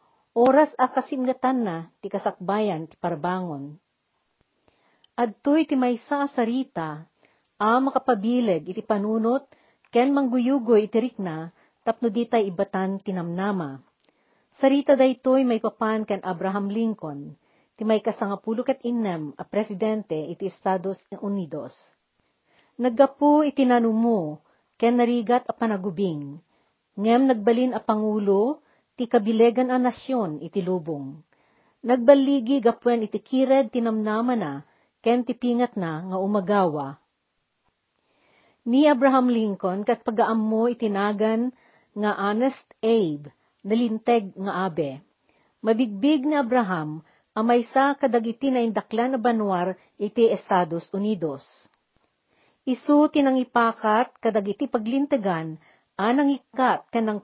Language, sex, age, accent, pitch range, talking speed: Filipino, female, 40-59, native, 195-250 Hz, 100 wpm